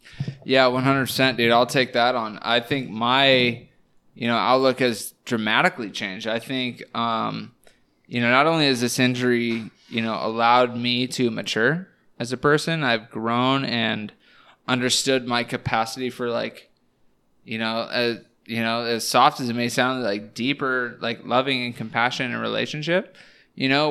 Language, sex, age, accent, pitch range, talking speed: English, male, 20-39, American, 120-130 Hz, 160 wpm